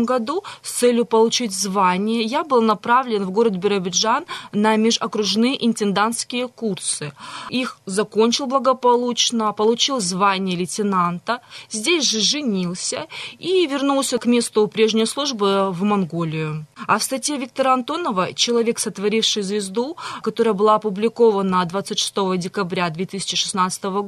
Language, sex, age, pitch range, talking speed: Russian, female, 20-39, 200-245 Hz, 115 wpm